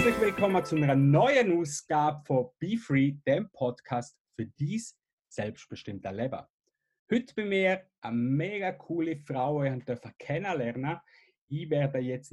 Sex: male